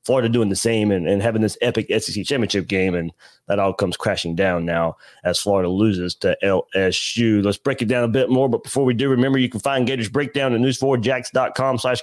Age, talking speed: 30-49, 220 wpm